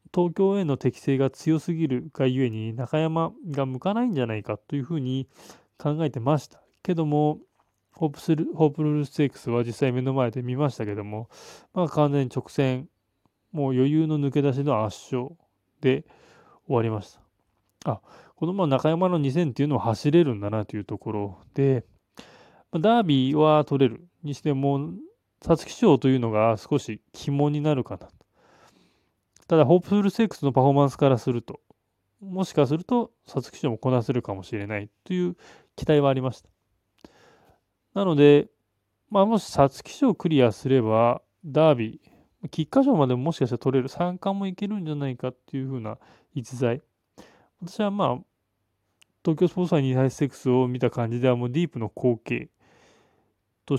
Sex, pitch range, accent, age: male, 115-155 Hz, native, 20-39